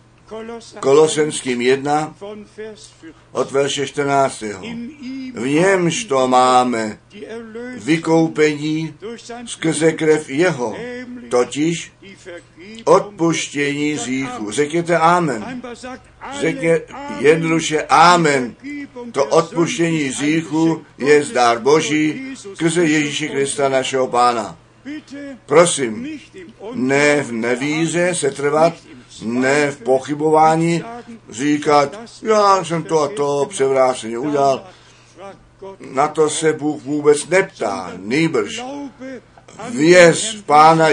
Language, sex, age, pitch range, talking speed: Czech, male, 60-79, 140-195 Hz, 85 wpm